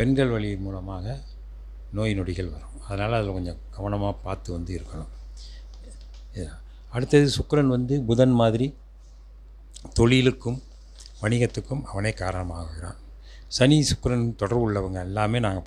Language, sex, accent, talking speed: Tamil, male, native, 105 wpm